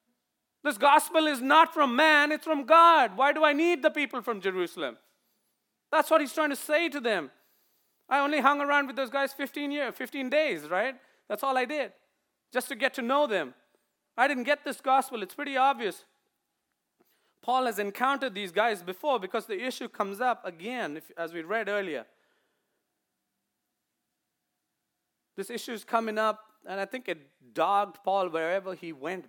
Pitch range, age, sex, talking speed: 180-265 Hz, 30-49, male, 175 wpm